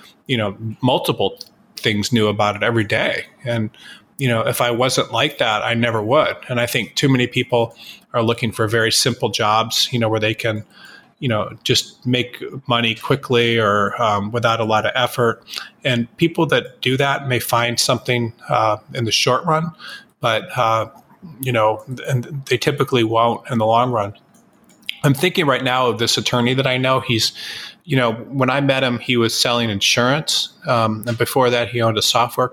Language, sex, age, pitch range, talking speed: English, male, 30-49, 115-130 Hz, 190 wpm